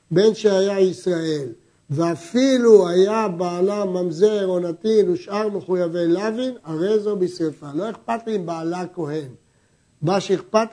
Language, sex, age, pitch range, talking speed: Hebrew, male, 60-79, 160-215 Hz, 125 wpm